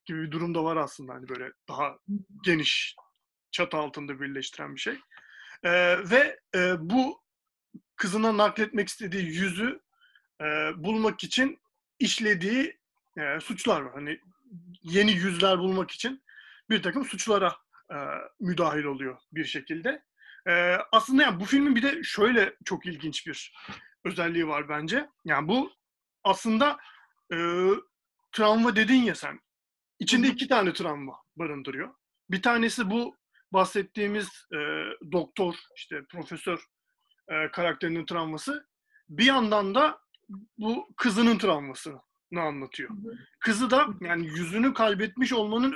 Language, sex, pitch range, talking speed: Turkish, male, 175-255 Hz, 120 wpm